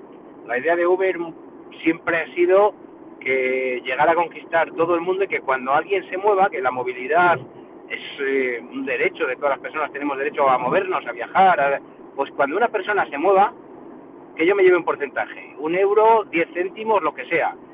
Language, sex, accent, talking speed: Spanish, male, Spanish, 195 wpm